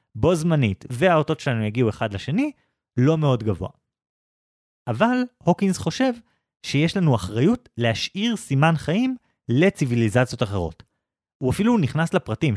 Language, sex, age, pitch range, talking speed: Hebrew, male, 30-49, 115-165 Hz, 120 wpm